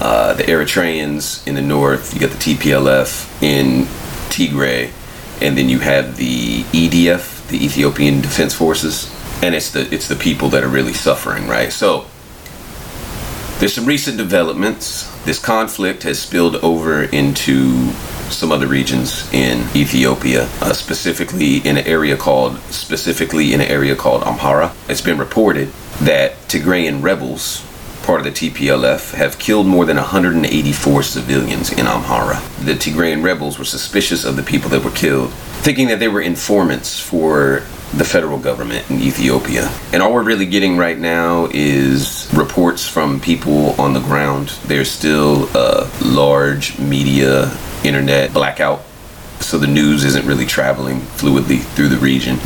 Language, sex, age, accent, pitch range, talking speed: English, male, 40-59, American, 65-80 Hz, 150 wpm